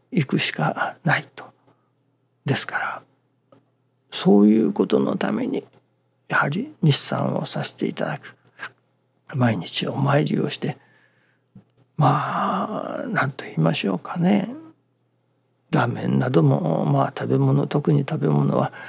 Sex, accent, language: male, native, Japanese